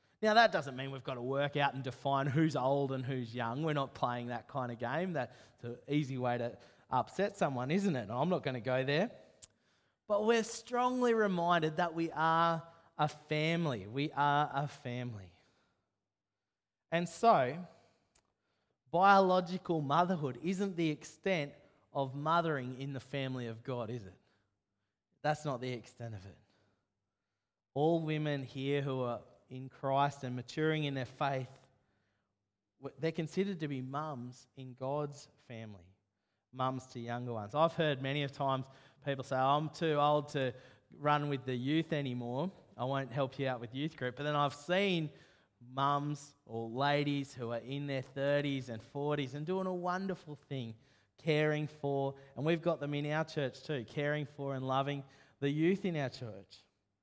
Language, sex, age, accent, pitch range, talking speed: English, male, 20-39, Australian, 125-155 Hz, 165 wpm